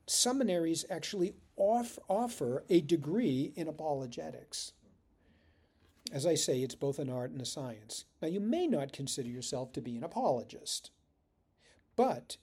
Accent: American